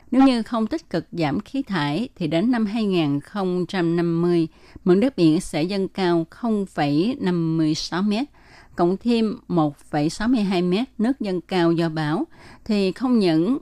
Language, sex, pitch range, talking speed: Vietnamese, female, 160-210 Hz, 130 wpm